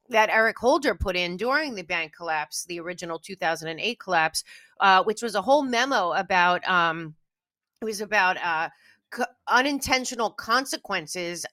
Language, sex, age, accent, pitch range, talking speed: English, female, 30-49, American, 190-260 Hz, 140 wpm